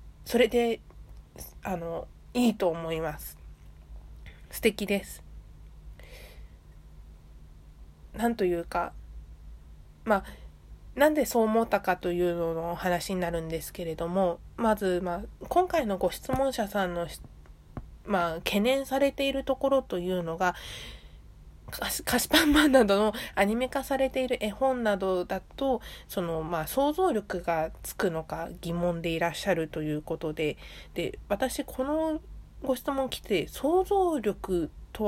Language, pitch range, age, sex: Japanese, 160-240 Hz, 20-39, female